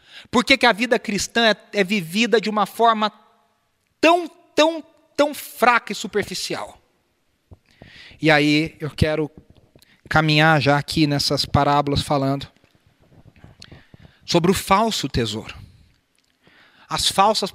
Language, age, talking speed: Portuguese, 40-59, 115 wpm